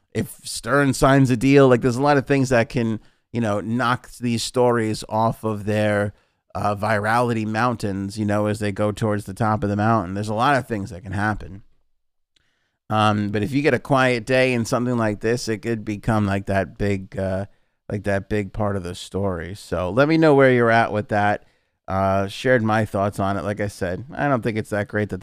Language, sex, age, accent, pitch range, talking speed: English, male, 30-49, American, 100-115 Hz, 225 wpm